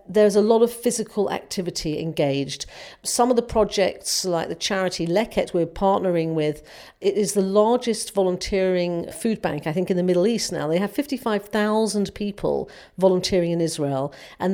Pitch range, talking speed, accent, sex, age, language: 170-215 Hz, 165 wpm, British, female, 50-69, English